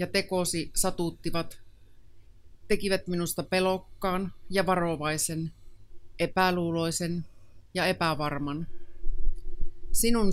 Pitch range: 115-180 Hz